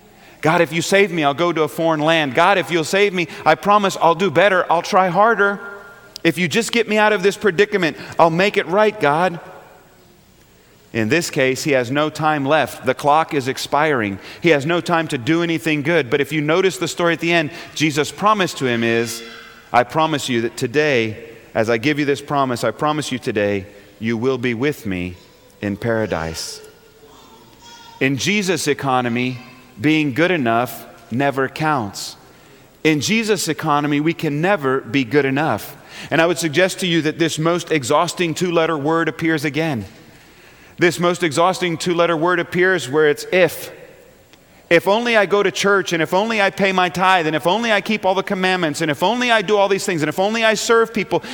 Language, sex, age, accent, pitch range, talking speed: English, male, 40-59, American, 135-185 Hz, 200 wpm